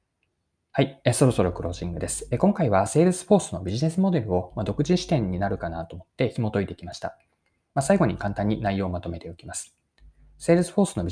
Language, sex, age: Japanese, male, 20-39